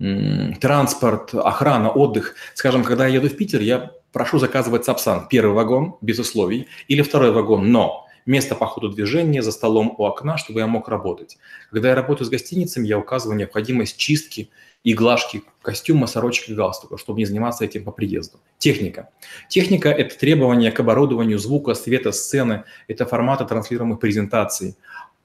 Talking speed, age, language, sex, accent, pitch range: 160 wpm, 30-49, Russian, male, native, 110-135 Hz